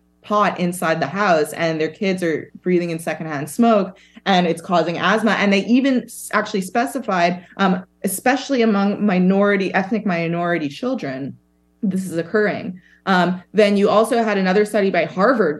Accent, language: American, English